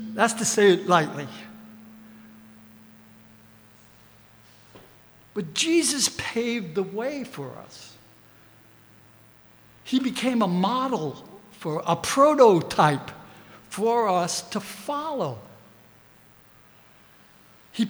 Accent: American